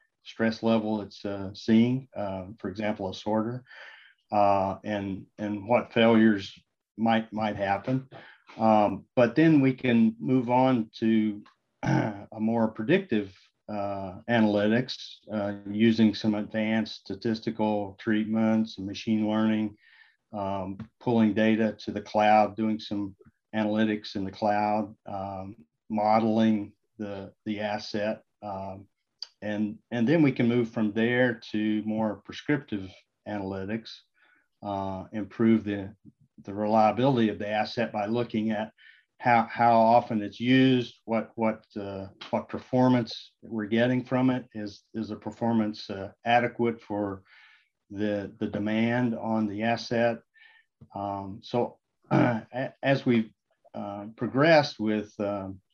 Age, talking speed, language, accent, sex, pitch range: 50-69, 125 wpm, English, American, male, 105-115 Hz